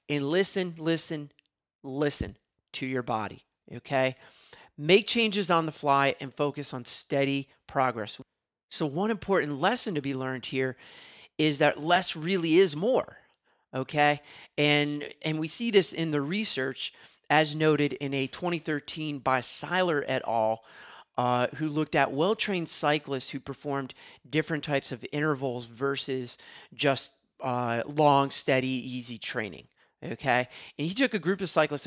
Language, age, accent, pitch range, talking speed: English, 40-59, American, 130-160 Hz, 145 wpm